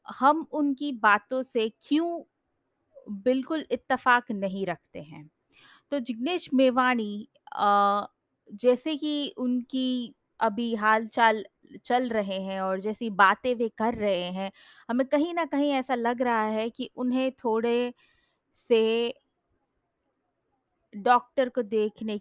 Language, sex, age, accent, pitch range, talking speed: Hindi, female, 20-39, native, 205-245 Hz, 115 wpm